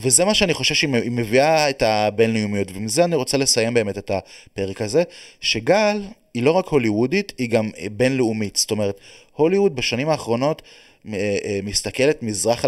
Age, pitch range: 30-49, 105-140 Hz